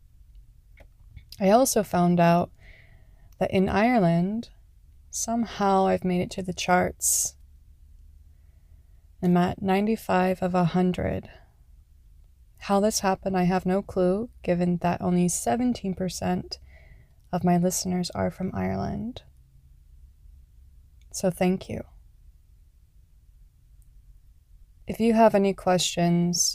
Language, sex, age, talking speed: English, female, 20-39, 100 wpm